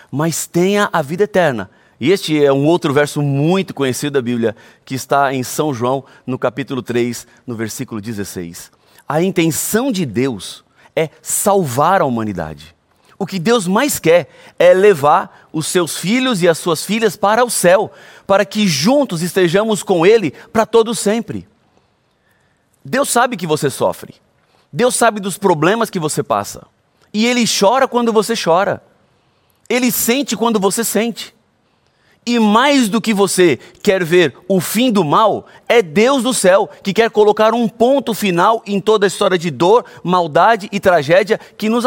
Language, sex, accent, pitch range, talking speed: Portuguese, male, Brazilian, 145-220 Hz, 165 wpm